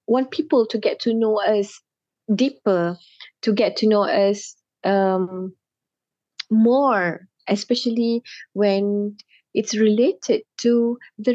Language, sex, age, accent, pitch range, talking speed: English, female, 20-39, Malaysian, 205-245 Hz, 110 wpm